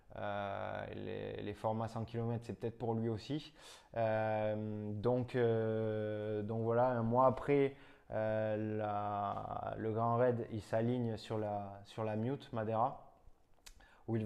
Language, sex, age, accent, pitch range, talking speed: French, male, 20-39, French, 110-125 Hz, 145 wpm